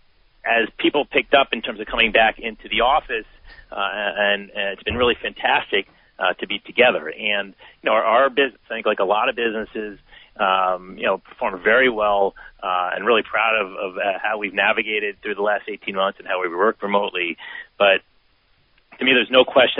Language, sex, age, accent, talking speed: English, male, 30-49, American, 205 wpm